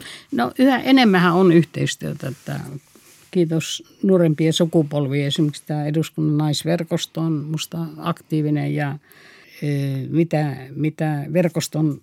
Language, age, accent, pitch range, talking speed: Finnish, 60-79, native, 145-165 Hz, 95 wpm